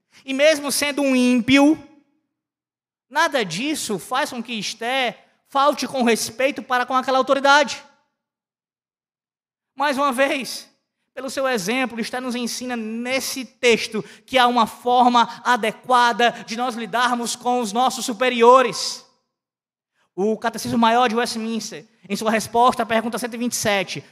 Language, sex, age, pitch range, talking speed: Portuguese, male, 20-39, 220-255 Hz, 130 wpm